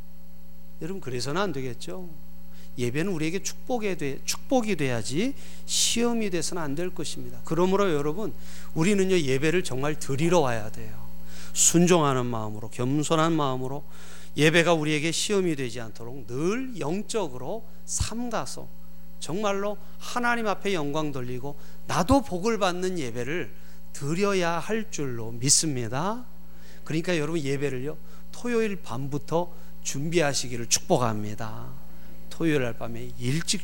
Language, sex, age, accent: Korean, male, 40-59, native